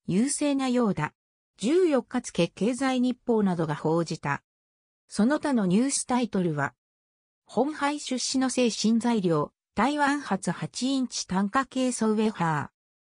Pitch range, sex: 170-260 Hz, female